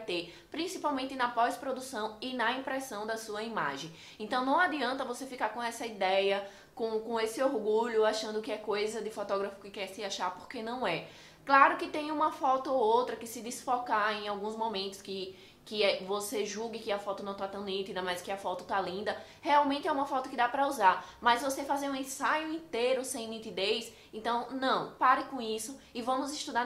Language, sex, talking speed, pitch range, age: Portuguese, female, 200 wpm, 200-265 Hz, 20-39